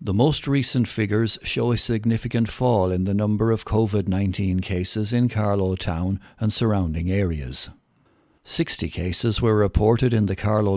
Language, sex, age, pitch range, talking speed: English, male, 60-79, 100-120 Hz, 150 wpm